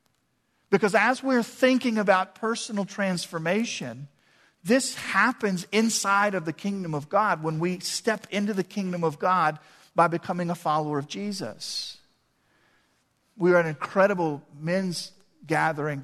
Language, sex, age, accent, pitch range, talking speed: English, male, 50-69, American, 150-195 Hz, 135 wpm